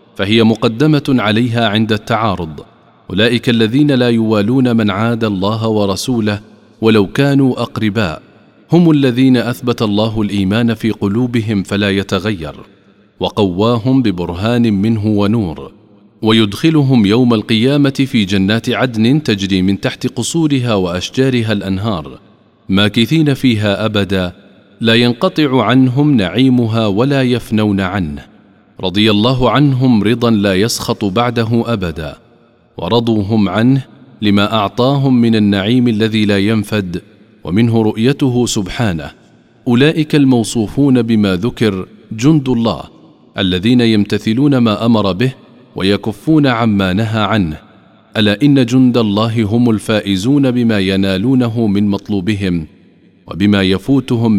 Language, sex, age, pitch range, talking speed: Arabic, male, 40-59, 100-120 Hz, 110 wpm